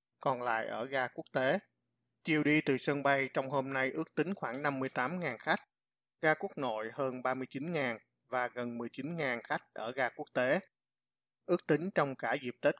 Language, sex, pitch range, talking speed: Vietnamese, male, 120-145 Hz, 180 wpm